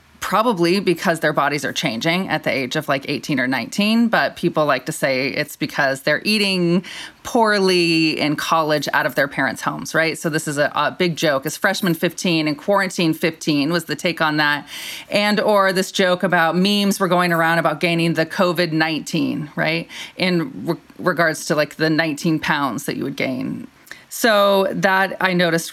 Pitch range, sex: 155-190 Hz, female